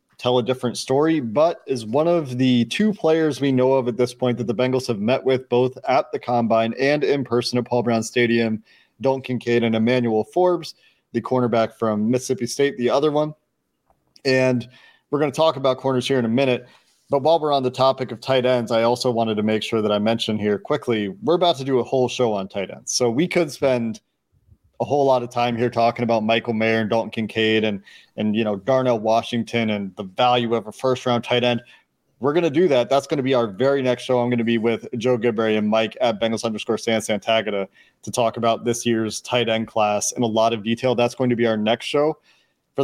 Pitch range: 115-135 Hz